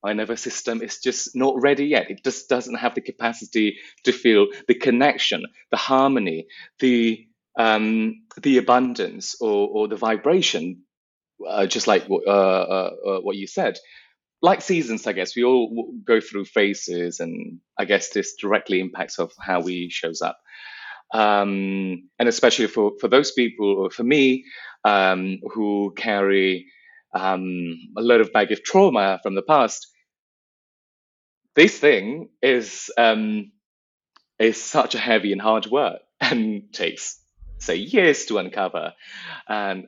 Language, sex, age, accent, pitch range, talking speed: English, male, 30-49, British, 100-130 Hz, 145 wpm